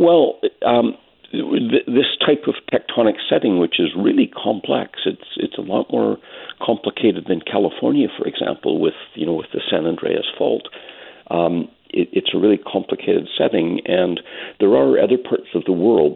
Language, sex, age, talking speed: English, male, 60-79, 165 wpm